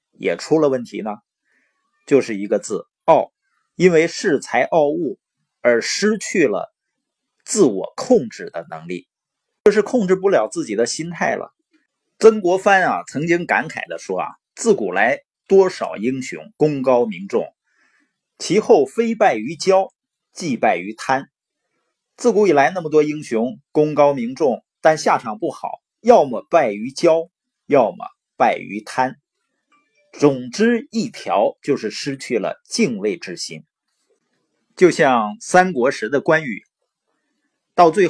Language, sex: Chinese, male